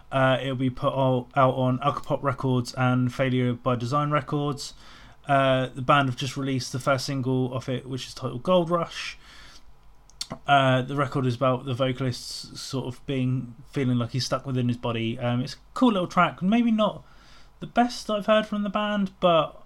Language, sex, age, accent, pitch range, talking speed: English, male, 20-39, British, 125-140 Hz, 190 wpm